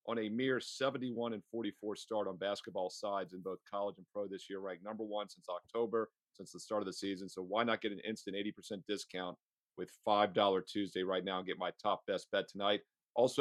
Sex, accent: male, American